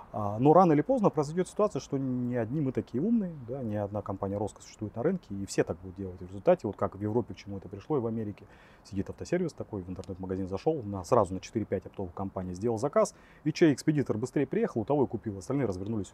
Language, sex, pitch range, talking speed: Russian, male, 95-125 Hz, 235 wpm